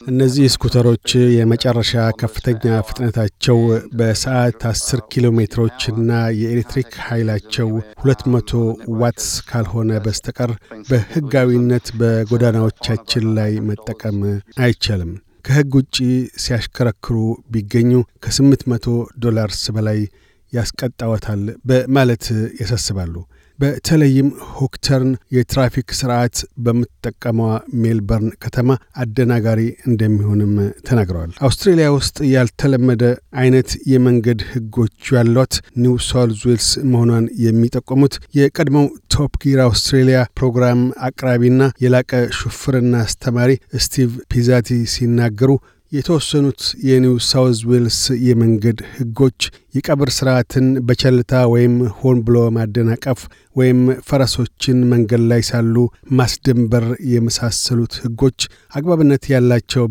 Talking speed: 85 wpm